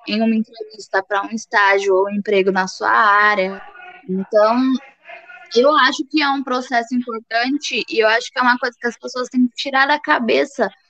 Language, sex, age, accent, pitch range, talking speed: Portuguese, female, 10-29, Brazilian, 205-250 Hz, 195 wpm